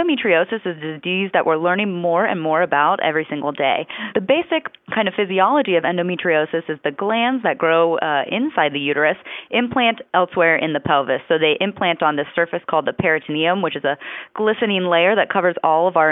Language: English